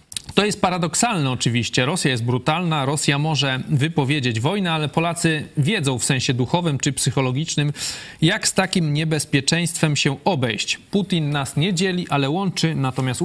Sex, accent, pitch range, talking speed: male, native, 135-165 Hz, 145 wpm